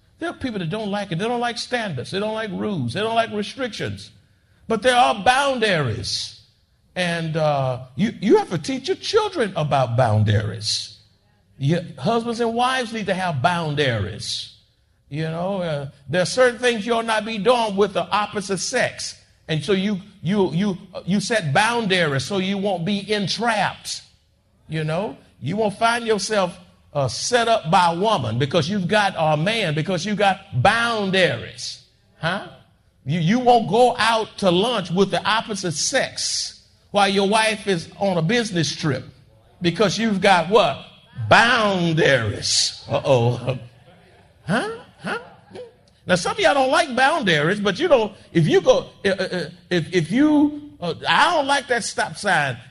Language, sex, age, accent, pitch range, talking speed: English, male, 50-69, American, 150-225 Hz, 165 wpm